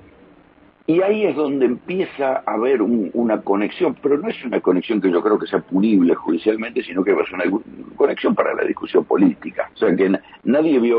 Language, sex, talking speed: Spanish, male, 200 wpm